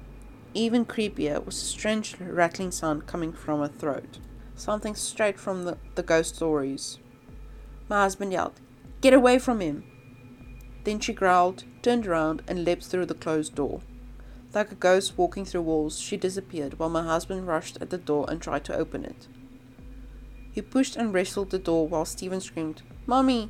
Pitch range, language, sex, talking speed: 155-200 Hz, English, female, 170 wpm